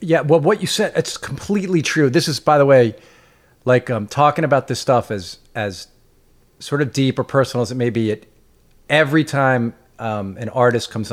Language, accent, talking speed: English, American, 200 wpm